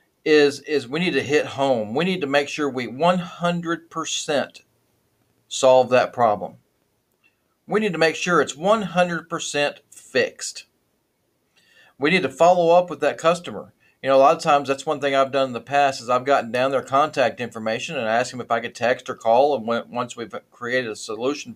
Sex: male